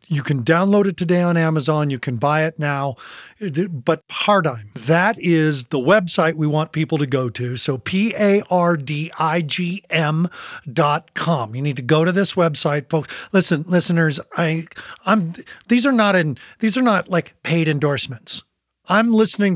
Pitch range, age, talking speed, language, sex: 145-185 Hz, 40-59, 175 wpm, English, male